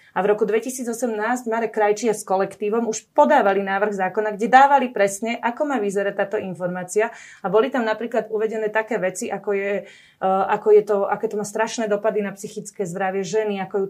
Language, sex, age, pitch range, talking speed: Slovak, female, 30-49, 205-230 Hz, 190 wpm